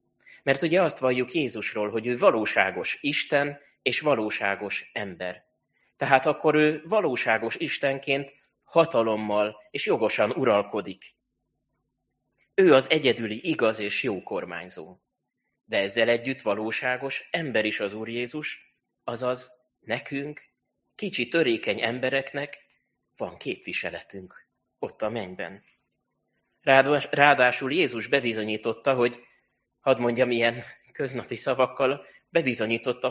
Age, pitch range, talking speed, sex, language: 20-39, 110-140 Hz, 105 wpm, male, Hungarian